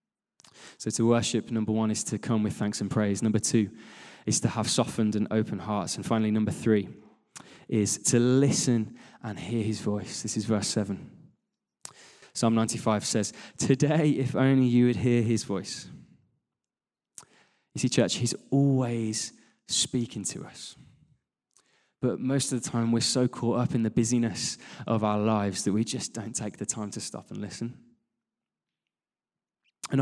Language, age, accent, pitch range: English, 20-39, British, 110-130 Hz